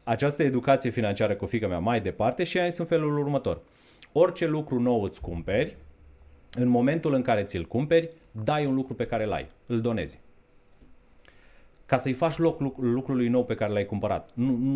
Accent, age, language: native, 30-49, Romanian